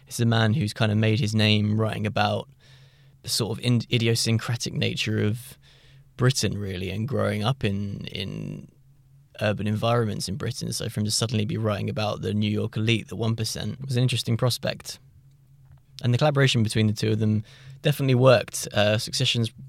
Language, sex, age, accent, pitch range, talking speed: English, male, 10-29, British, 105-130 Hz, 175 wpm